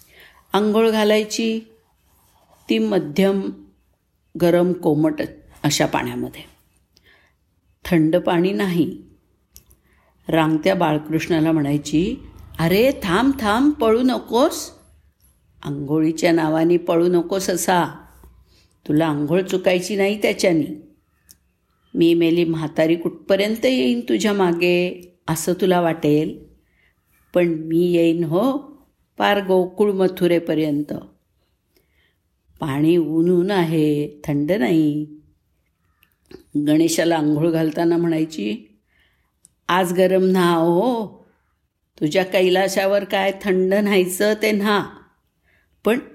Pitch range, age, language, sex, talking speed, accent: 145-190 Hz, 50-69, Marathi, female, 85 wpm, native